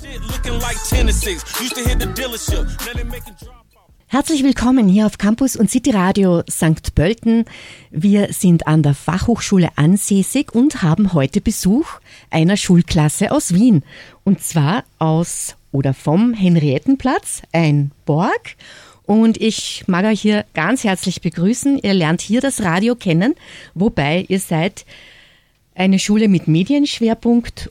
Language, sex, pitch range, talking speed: German, female, 160-220 Hz, 115 wpm